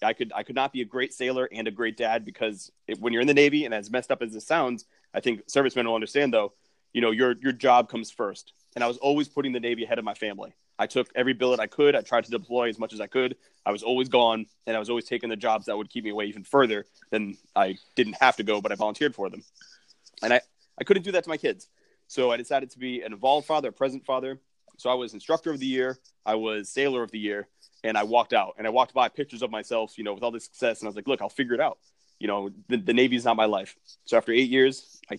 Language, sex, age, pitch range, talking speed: English, male, 30-49, 115-140 Hz, 285 wpm